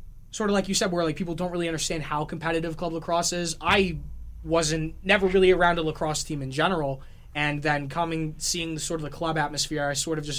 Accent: American